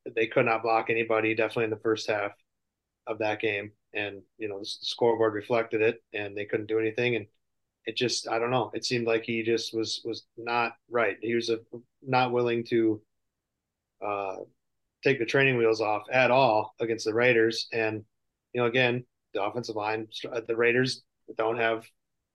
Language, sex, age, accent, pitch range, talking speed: English, male, 30-49, American, 110-120 Hz, 180 wpm